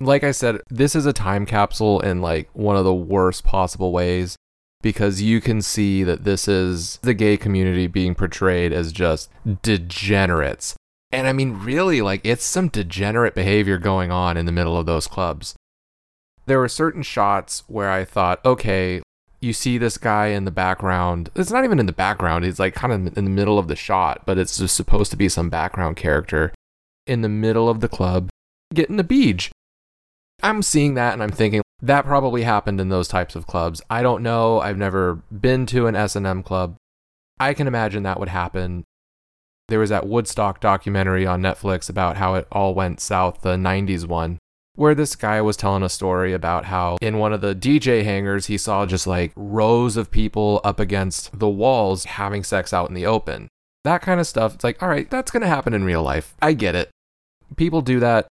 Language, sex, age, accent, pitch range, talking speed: English, male, 30-49, American, 90-115 Hz, 200 wpm